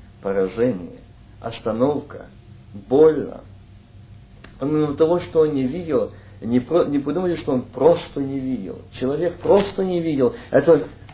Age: 50-69